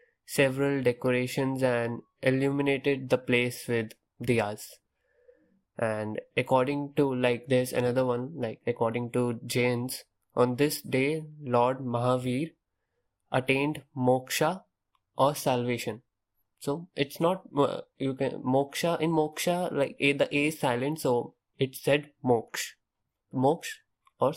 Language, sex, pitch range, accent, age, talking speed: English, male, 120-140 Hz, Indian, 20-39, 120 wpm